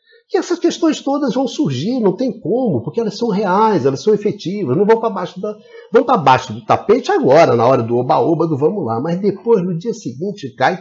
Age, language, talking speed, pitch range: 50-69, Portuguese, 205 wpm, 115-190 Hz